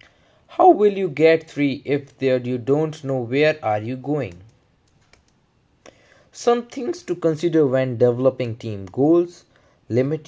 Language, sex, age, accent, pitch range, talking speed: English, male, 20-39, Indian, 115-160 Hz, 135 wpm